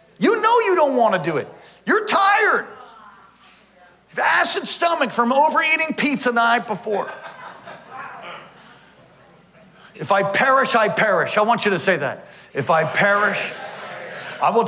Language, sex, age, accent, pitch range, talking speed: English, male, 50-69, American, 120-200 Hz, 140 wpm